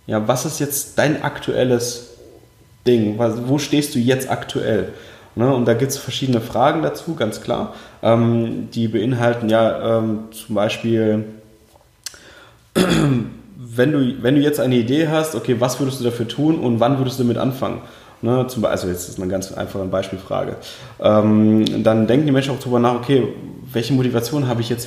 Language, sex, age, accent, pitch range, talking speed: German, male, 20-39, German, 115-145 Hz, 165 wpm